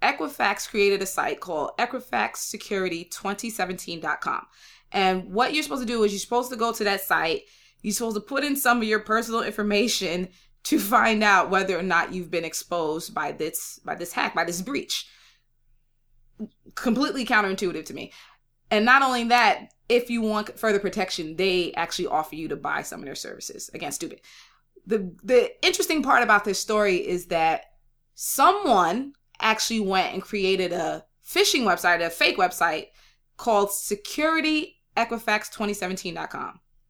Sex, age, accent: female, 20-39, American